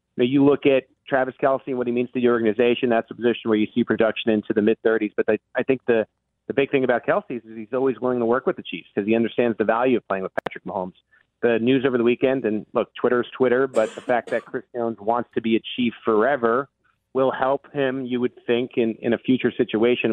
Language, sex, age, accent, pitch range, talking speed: English, male, 40-59, American, 110-130 Hz, 245 wpm